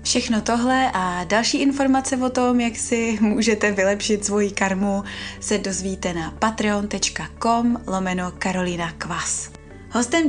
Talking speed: 120 wpm